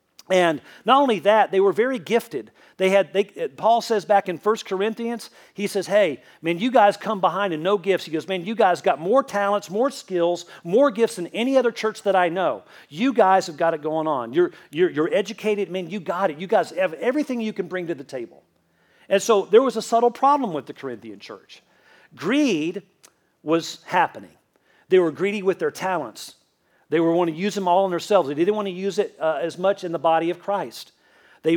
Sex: male